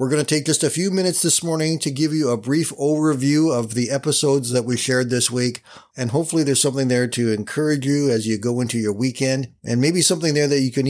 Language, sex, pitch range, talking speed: English, male, 120-155 Hz, 250 wpm